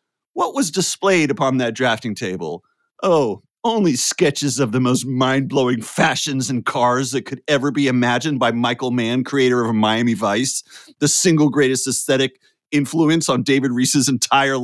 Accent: American